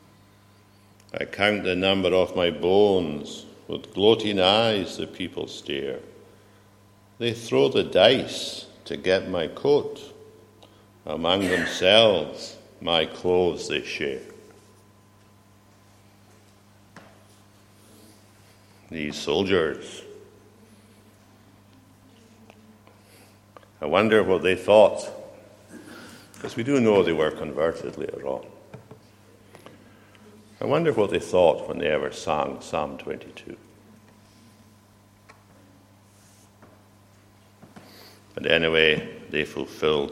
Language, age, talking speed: English, 60-79, 85 wpm